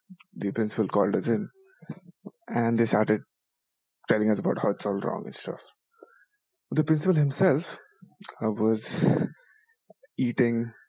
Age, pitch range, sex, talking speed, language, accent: 20-39, 115-175 Hz, male, 120 wpm, English, Indian